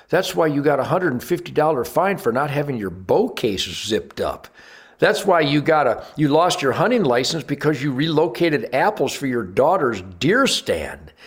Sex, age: male, 60-79